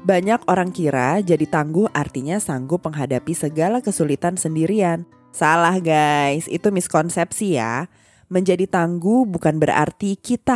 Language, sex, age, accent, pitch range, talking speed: Indonesian, female, 20-39, native, 140-185 Hz, 120 wpm